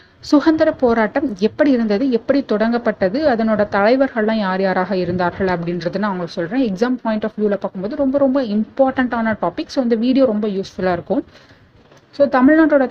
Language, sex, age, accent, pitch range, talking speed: Tamil, female, 30-49, native, 195-260 Hz, 150 wpm